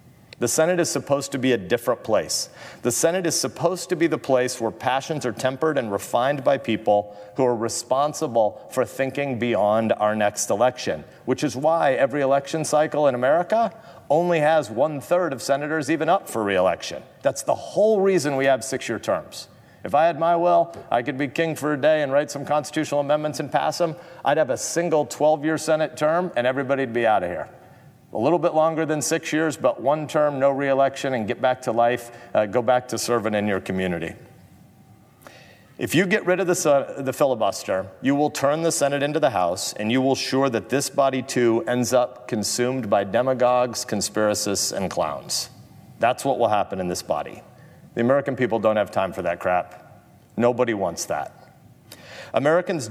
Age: 40-59